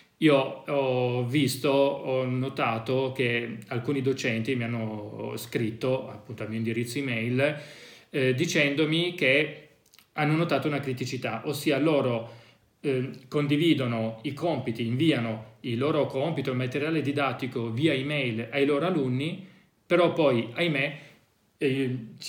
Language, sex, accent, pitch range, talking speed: Italian, male, native, 120-150 Hz, 120 wpm